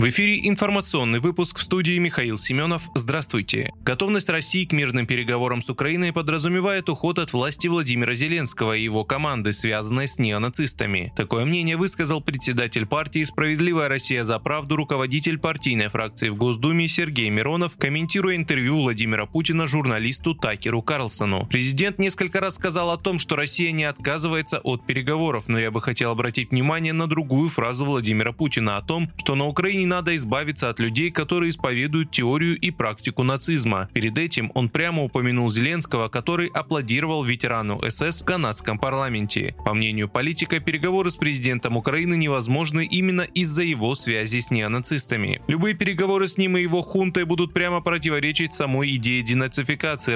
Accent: native